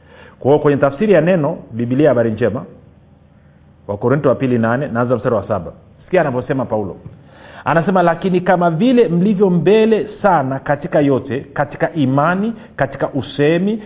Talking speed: 130 wpm